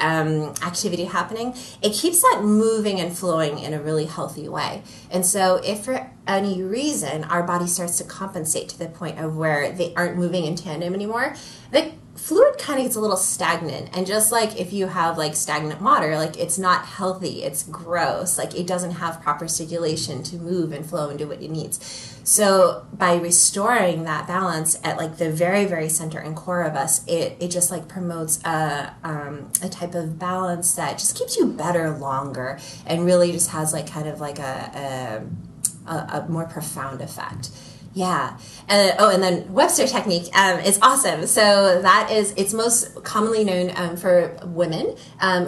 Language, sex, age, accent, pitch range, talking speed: English, female, 20-39, American, 160-195 Hz, 185 wpm